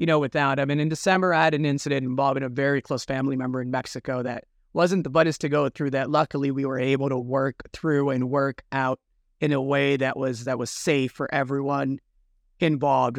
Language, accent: English, American